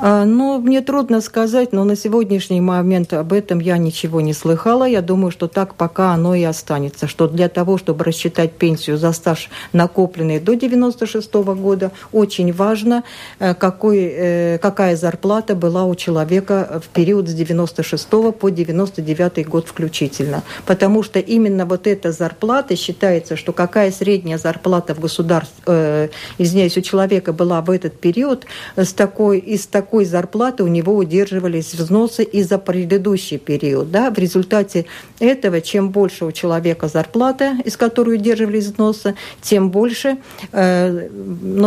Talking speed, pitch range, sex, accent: 140 wpm, 170-210 Hz, female, native